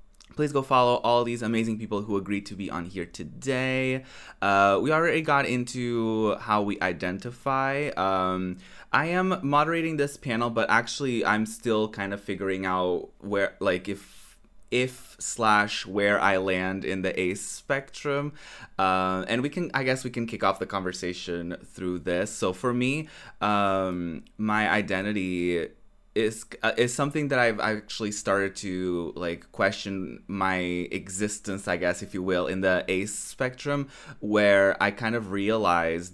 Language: English